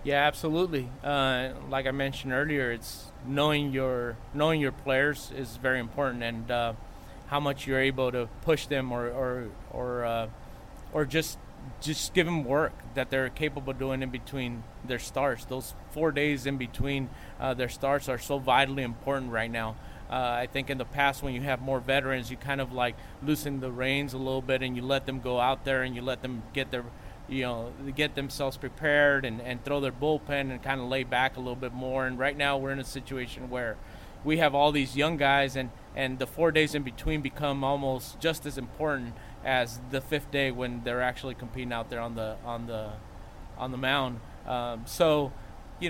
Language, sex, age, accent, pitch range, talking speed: English, male, 30-49, American, 125-145 Hz, 200 wpm